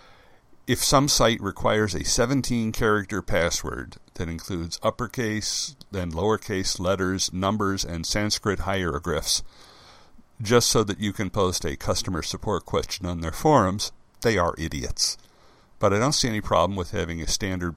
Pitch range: 90-120 Hz